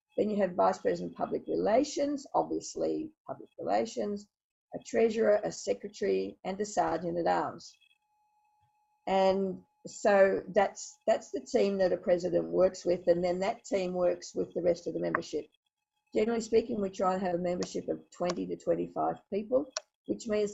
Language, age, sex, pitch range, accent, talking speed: English, 50-69, female, 185-305 Hz, Australian, 165 wpm